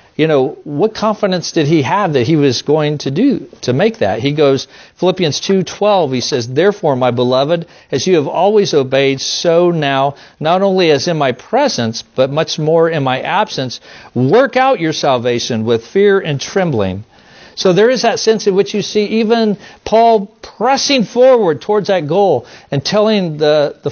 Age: 50-69